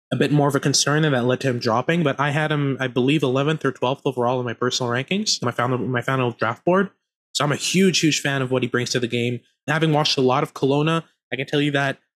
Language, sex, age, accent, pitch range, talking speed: English, male, 20-39, American, 130-155 Hz, 280 wpm